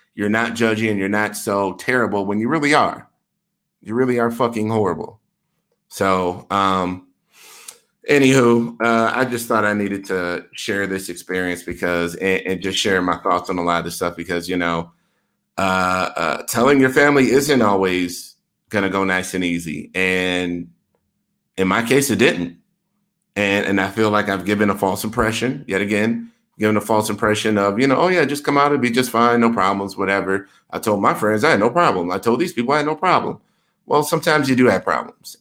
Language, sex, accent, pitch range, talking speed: English, male, American, 95-115 Hz, 200 wpm